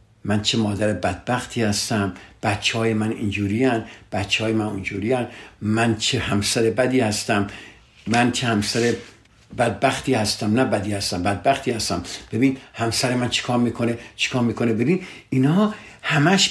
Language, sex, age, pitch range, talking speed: Persian, male, 60-79, 110-135 Hz, 145 wpm